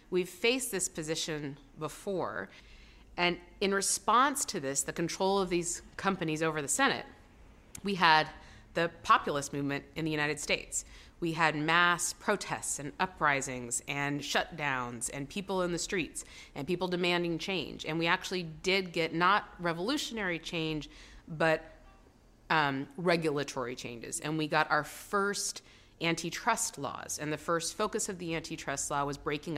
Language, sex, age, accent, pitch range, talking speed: English, female, 30-49, American, 150-185 Hz, 150 wpm